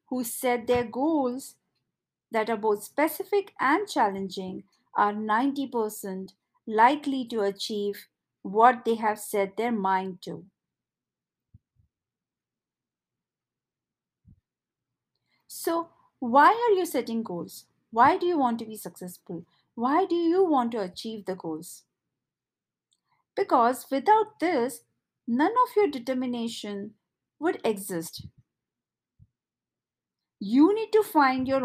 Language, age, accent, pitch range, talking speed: English, 50-69, Indian, 210-315 Hz, 110 wpm